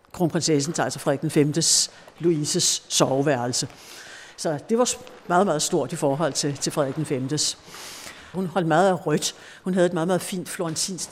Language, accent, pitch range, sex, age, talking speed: Danish, native, 150-180 Hz, female, 60-79, 165 wpm